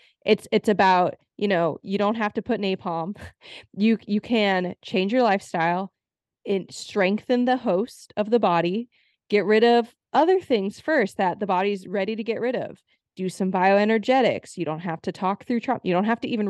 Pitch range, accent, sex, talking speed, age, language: 180-225 Hz, American, female, 195 wpm, 20-39, English